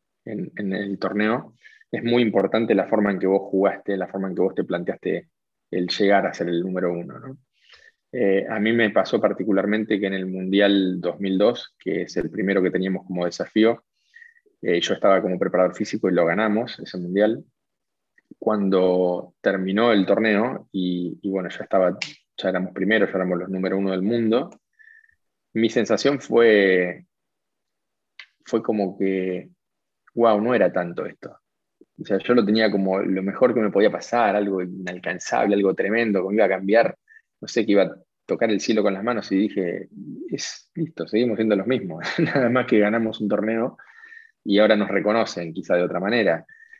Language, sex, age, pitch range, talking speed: Spanish, male, 20-39, 95-115 Hz, 180 wpm